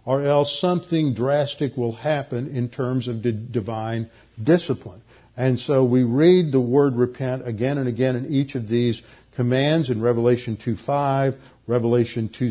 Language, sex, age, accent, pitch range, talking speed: English, male, 50-69, American, 120-145 Hz, 150 wpm